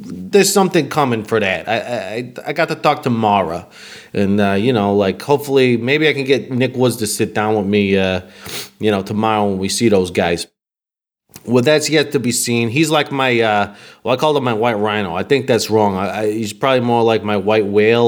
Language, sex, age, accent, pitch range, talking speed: English, male, 30-49, American, 105-140 Hz, 230 wpm